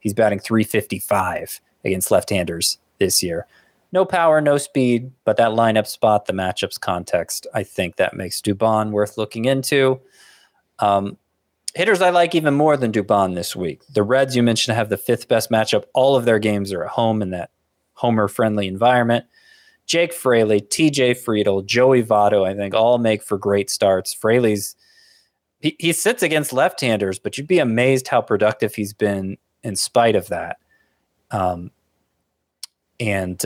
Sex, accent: male, American